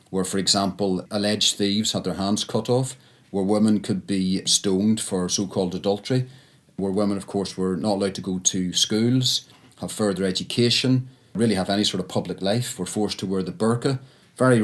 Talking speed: 190 wpm